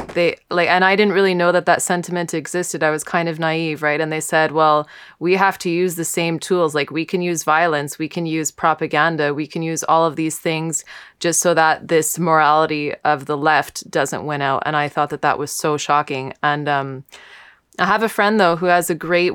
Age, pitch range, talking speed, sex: 20-39, 155-180 Hz, 230 wpm, female